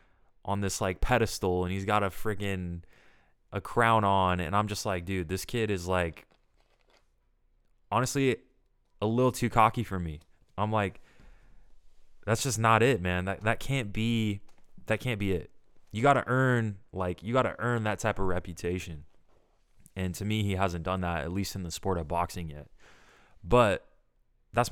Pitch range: 90-110 Hz